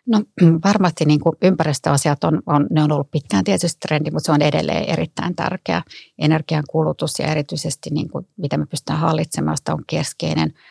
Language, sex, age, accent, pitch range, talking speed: Finnish, female, 30-49, native, 150-170 Hz, 170 wpm